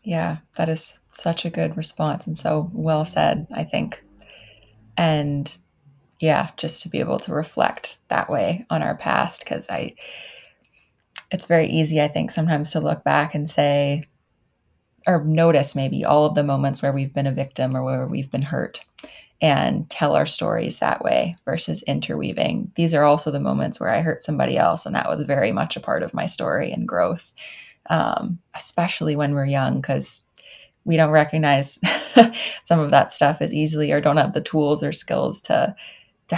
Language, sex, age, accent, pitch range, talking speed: English, female, 20-39, American, 145-165 Hz, 180 wpm